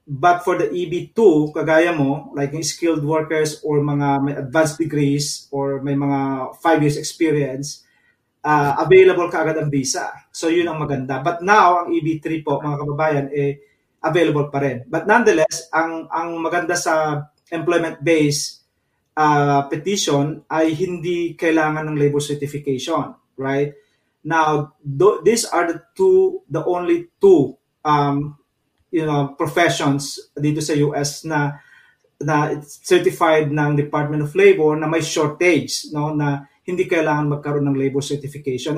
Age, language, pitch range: 20-39, English, 145-170 Hz